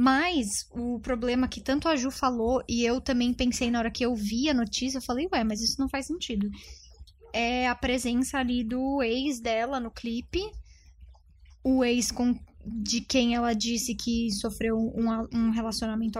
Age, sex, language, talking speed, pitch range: 10-29, female, Portuguese, 175 wpm, 225-270 Hz